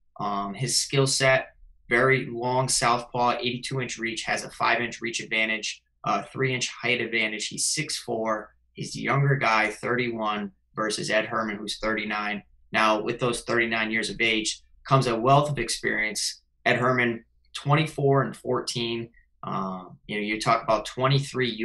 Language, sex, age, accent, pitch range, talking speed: English, male, 20-39, American, 105-130 Hz, 160 wpm